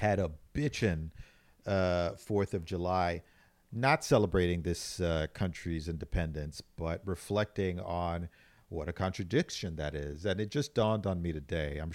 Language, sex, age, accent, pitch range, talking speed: English, male, 40-59, American, 80-100 Hz, 145 wpm